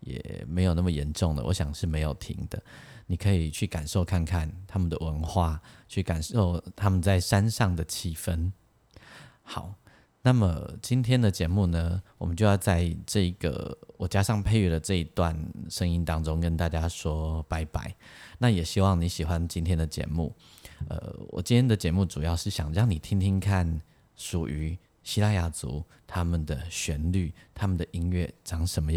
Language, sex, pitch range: Chinese, male, 80-95 Hz